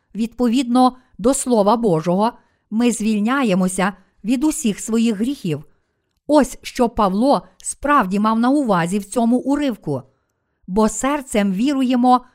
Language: Ukrainian